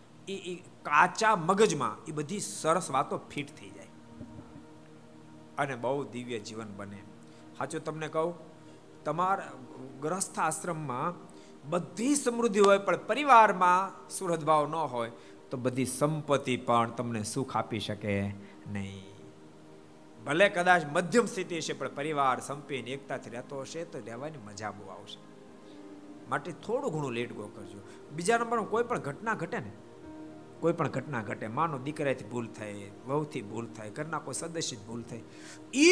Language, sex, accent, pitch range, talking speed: Gujarati, male, native, 115-185 Hz, 95 wpm